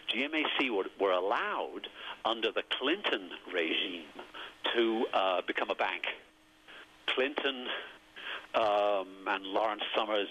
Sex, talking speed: male, 105 wpm